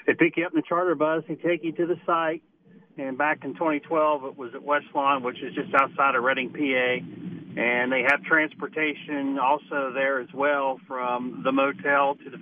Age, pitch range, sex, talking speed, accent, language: 40-59, 140-175 Hz, male, 210 wpm, American, English